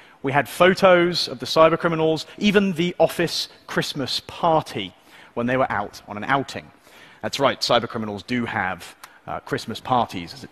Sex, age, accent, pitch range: male, 40-59, British, 130-190 Hz